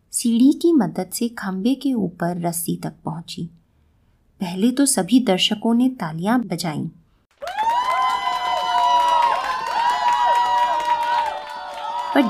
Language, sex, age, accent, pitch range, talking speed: Hindi, female, 20-39, native, 180-255 Hz, 90 wpm